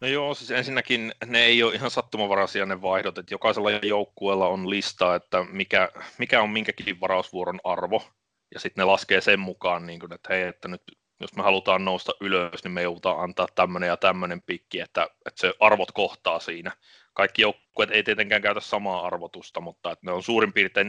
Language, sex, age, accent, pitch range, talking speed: Finnish, male, 30-49, native, 90-110 Hz, 190 wpm